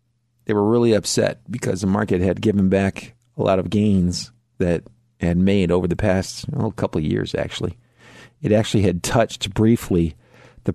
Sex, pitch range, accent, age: male, 90-120 Hz, American, 40-59